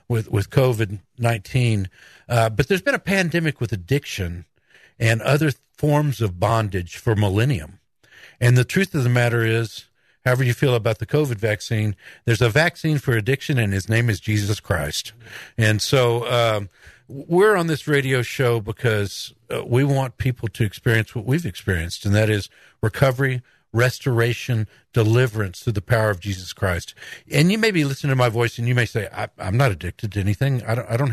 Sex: male